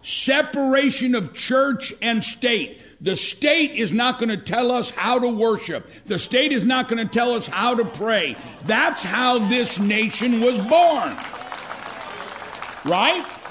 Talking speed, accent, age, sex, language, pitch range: 150 wpm, American, 60-79, male, English, 190-250 Hz